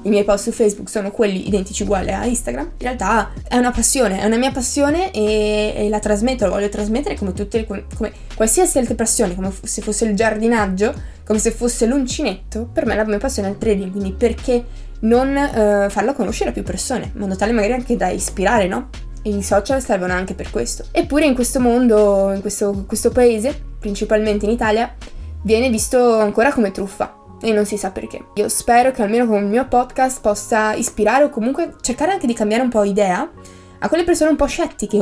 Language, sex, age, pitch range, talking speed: Italian, female, 20-39, 205-250 Hz, 210 wpm